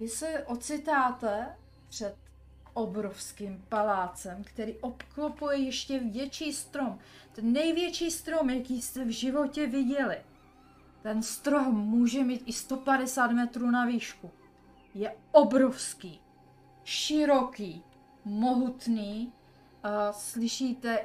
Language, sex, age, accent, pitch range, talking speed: Czech, female, 30-49, native, 205-260 Hz, 95 wpm